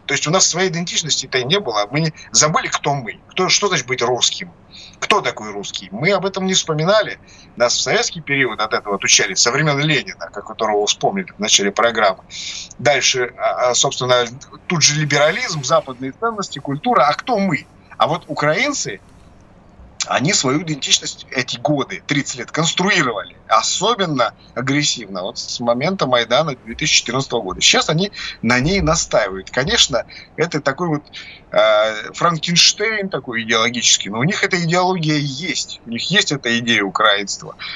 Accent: native